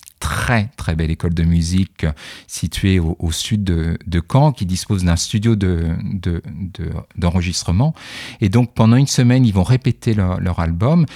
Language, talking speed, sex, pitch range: French, 170 wpm, male, 85-120 Hz